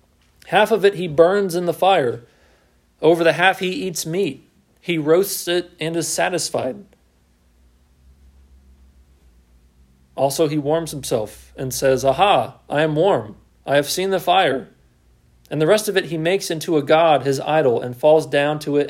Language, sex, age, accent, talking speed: English, male, 40-59, American, 165 wpm